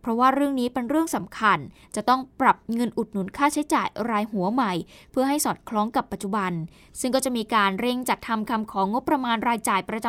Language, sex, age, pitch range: Thai, female, 20-39, 205-265 Hz